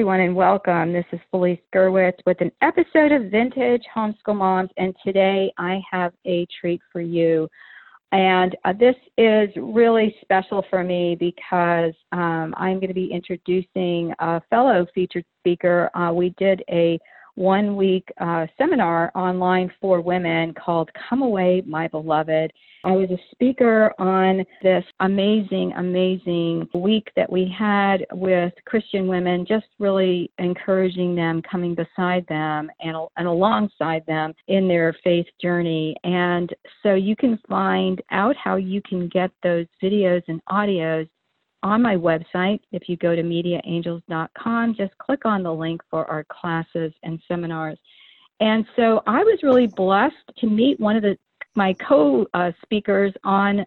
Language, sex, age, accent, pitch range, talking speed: English, female, 50-69, American, 175-200 Hz, 145 wpm